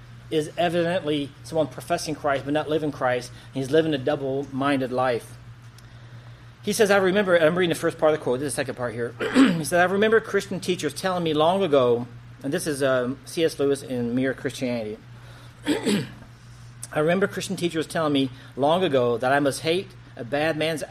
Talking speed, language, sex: 190 wpm, English, male